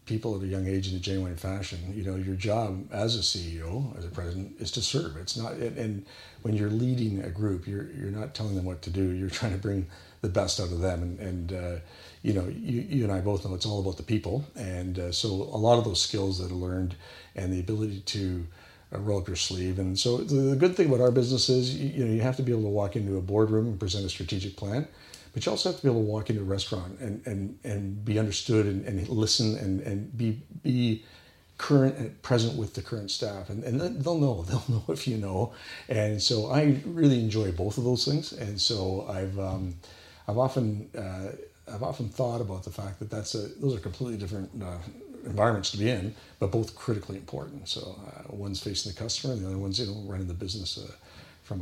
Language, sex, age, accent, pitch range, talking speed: English, male, 50-69, American, 95-115 Hz, 240 wpm